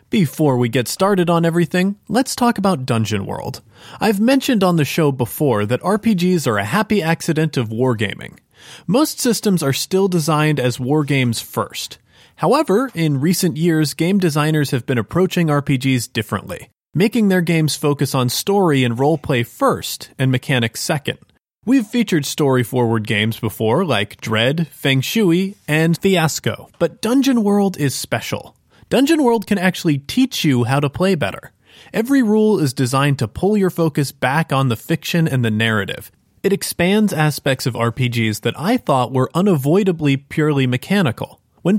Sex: male